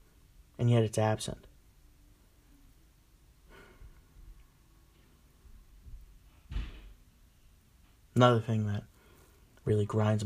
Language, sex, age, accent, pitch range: English, male, 30-49, American, 100-120 Hz